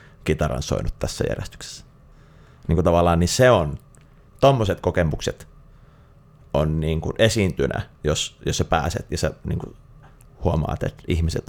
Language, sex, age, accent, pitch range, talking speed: Finnish, male, 30-49, native, 80-105 Hz, 135 wpm